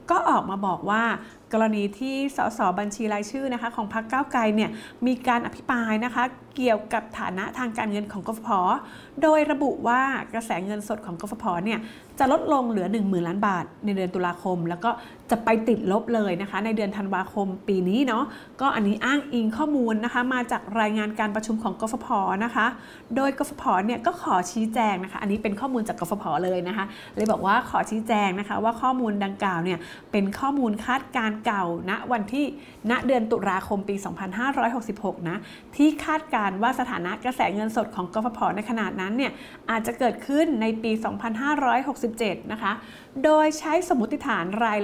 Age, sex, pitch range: 30-49, female, 205-255 Hz